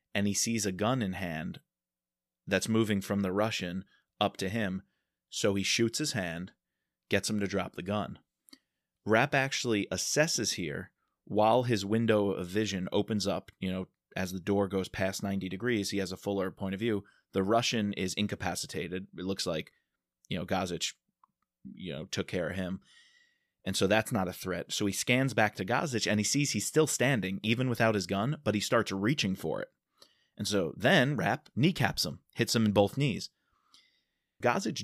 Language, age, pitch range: English, 20-39, 95-115 Hz